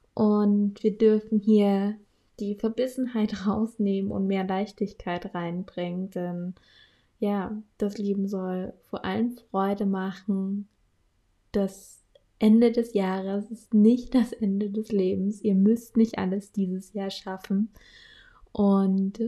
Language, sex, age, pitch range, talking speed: German, female, 20-39, 190-215 Hz, 120 wpm